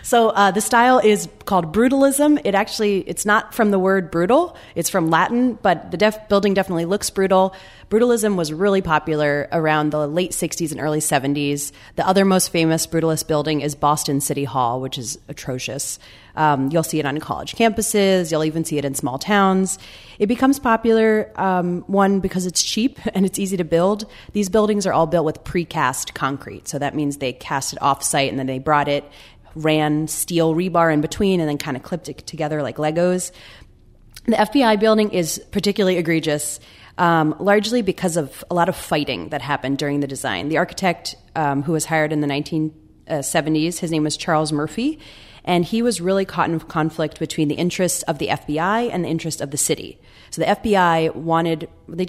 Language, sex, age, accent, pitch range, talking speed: English, female, 30-49, American, 150-195 Hz, 190 wpm